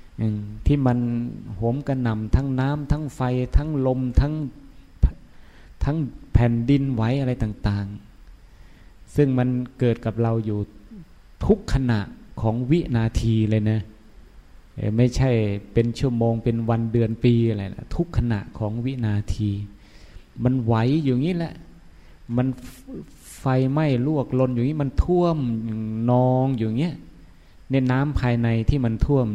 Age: 20-39